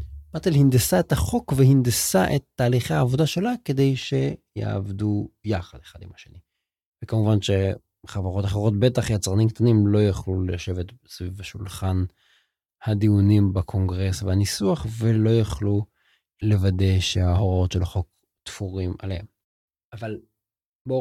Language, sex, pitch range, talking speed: Hebrew, male, 95-125 Hz, 110 wpm